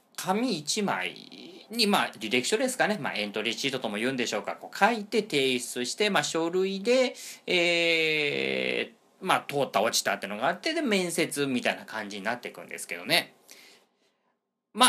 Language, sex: Japanese, male